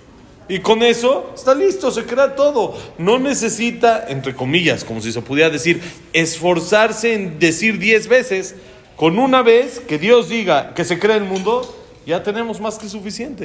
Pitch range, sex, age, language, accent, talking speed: 150-225 Hz, male, 40-59, Spanish, Mexican, 170 wpm